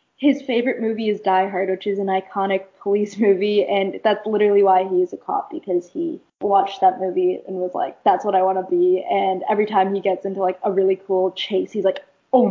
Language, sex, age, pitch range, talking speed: English, female, 10-29, 190-250 Hz, 225 wpm